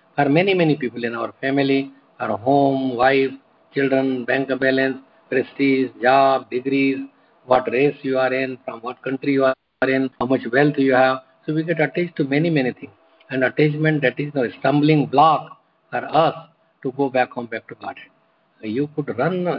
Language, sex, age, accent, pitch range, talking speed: English, male, 50-69, Indian, 130-145 Hz, 180 wpm